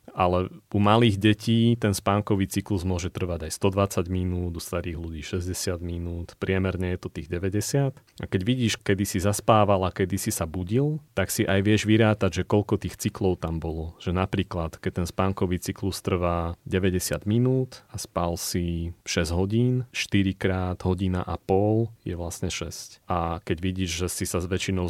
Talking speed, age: 175 wpm, 30-49